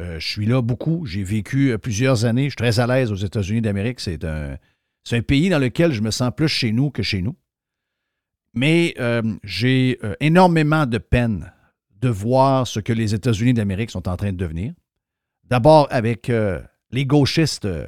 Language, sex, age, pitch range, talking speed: French, male, 50-69, 110-145 Hz, 180 wpm